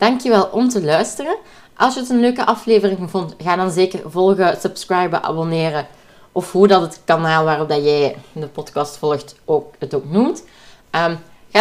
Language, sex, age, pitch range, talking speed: Dutch, female, 20-39, 160-210 Hz, 160 wpm